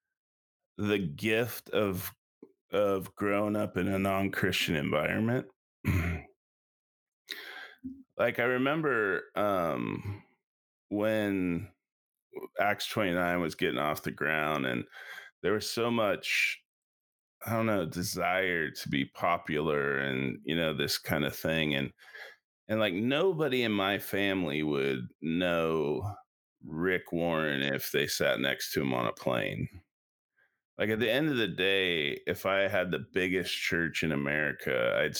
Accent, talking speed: American, 130 wpm